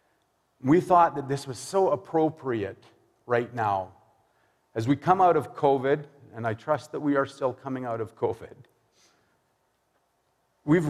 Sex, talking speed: male, 150 wpm